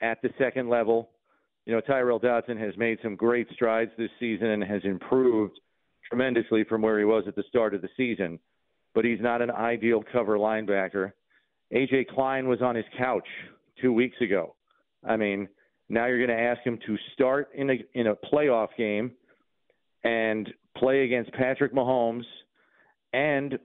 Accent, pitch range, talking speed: American, 115-130 Hz, 170 wpm